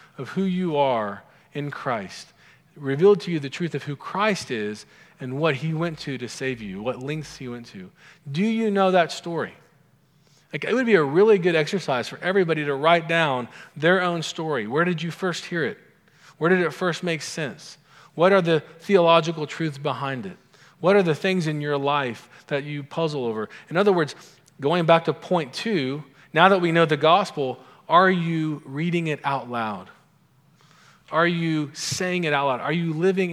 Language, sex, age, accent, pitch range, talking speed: English, male, 40-59, American, 135-170 Hz, 195 wpm